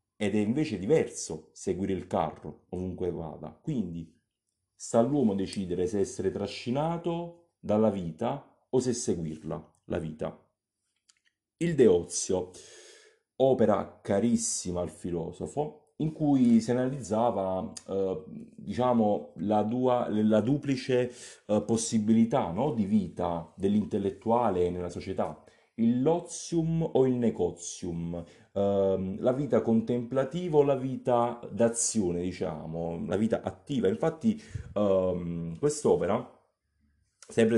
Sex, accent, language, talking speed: male, native, Italian, 105 wpm